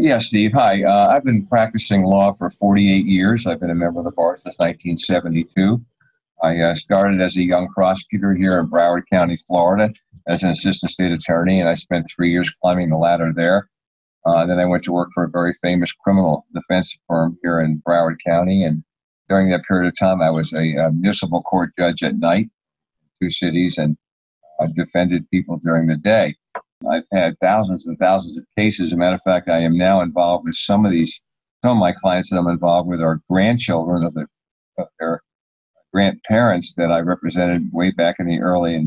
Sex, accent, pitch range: male, American, 85-95 Hz